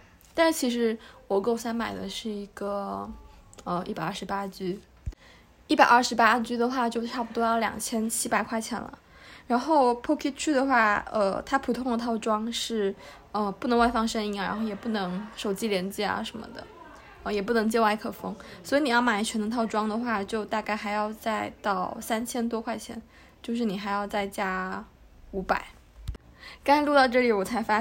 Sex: female